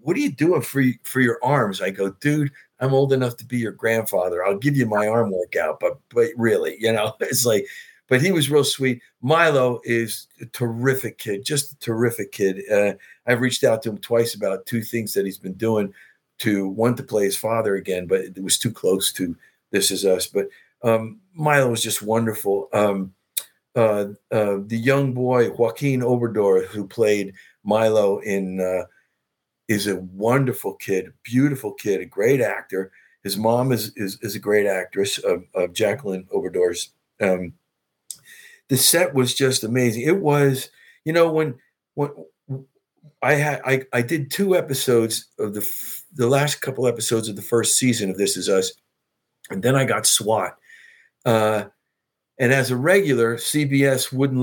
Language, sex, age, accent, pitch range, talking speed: English, male, 50-69, American, 110-145 Hz, 180 wpm